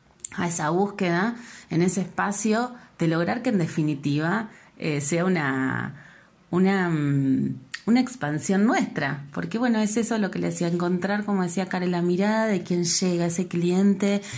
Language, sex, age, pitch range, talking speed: Spanish, female, 30-49, 165-200 Hz, 155 wpm